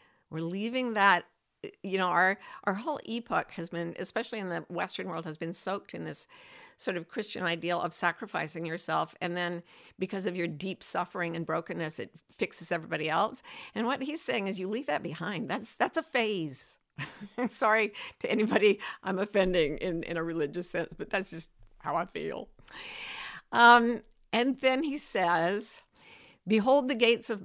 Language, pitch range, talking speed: English, 170-225 Hz, 175 wpm